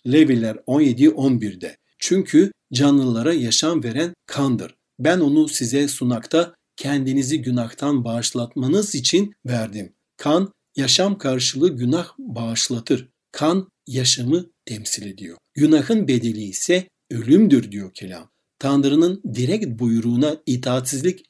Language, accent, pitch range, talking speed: Turkish, native, 120-165 Hz, 100 wpm